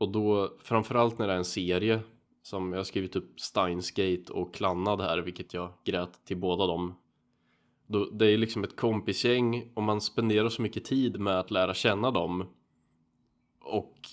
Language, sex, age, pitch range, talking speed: Swedish, male, 20-39, 95-110 Hz, 170 wpm